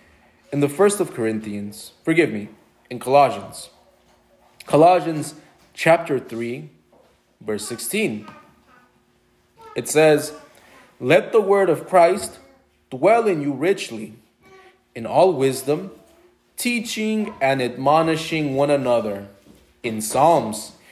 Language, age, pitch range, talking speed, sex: English, 20-39, 120-185 Hz, 100 wpm, male